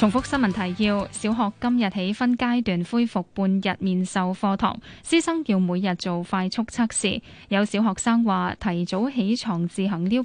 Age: 10-29